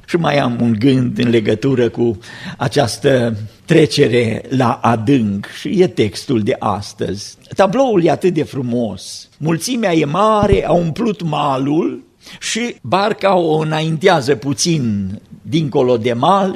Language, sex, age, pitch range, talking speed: Romanian, male, 50-69, 125-185 Hz, 130 wpm